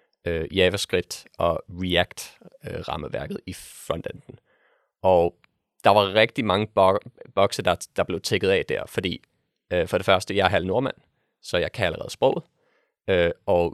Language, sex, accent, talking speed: Danish, male, native, 160 wpm